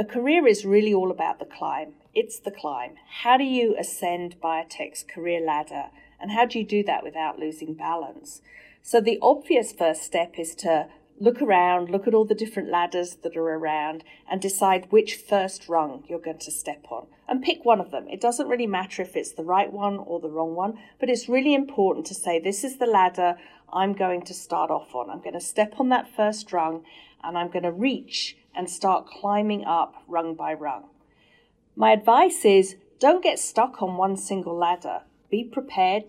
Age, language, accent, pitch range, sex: 40-59, Chinese, British, 165-225 Hz, female